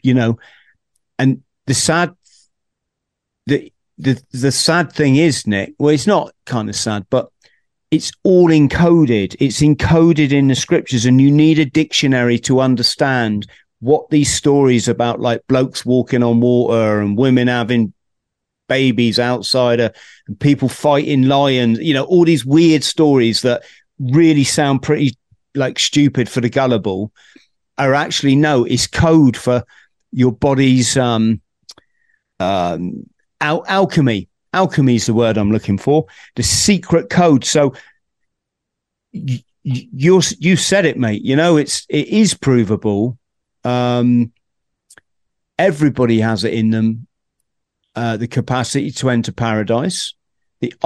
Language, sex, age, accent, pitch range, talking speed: English, male, 50-69, British, 115-150 Hz, 135 wpm